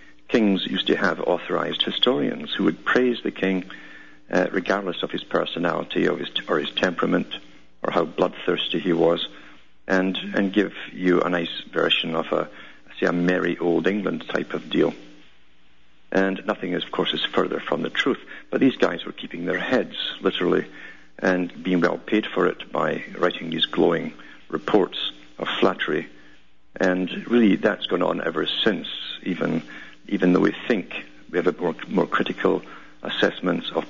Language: English